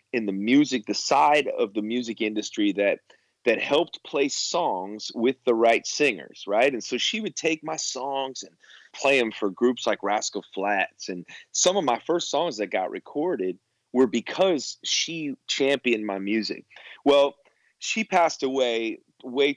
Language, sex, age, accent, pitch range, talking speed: English, male, 30-49, American, 110-140 Hz, 165 wpm